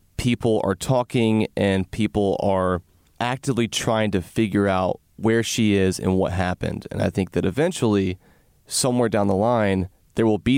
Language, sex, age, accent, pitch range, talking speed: English, male, 30-49, American, 95-115 Hz, 165 wpm